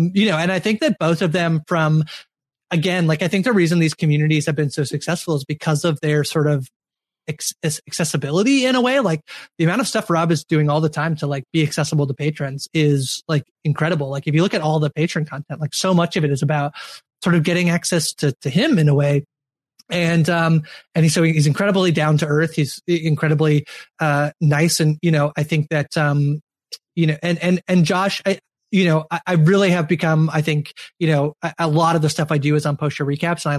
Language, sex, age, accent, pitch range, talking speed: English, male, 20-39, American, 150-175 Hz, 235 wpm